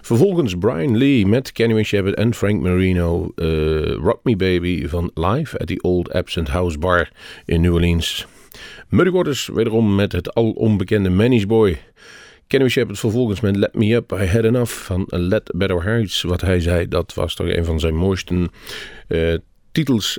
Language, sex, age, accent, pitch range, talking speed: Dutch, male, 40-59, Dutch, 90-110 Hz, 175 wpm